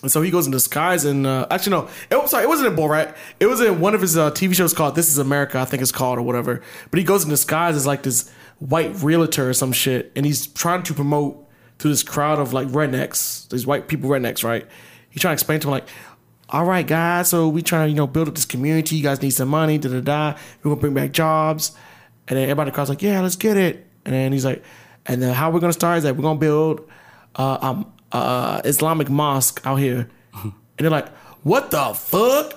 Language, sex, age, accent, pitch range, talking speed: English, male, 20-39, American, 140-185 Hz, 250 wpm